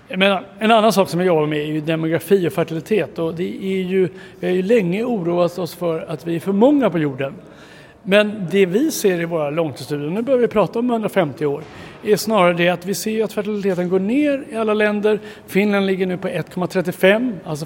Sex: male